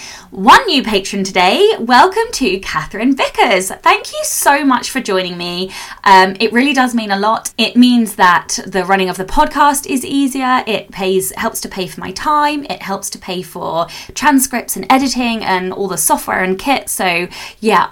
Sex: female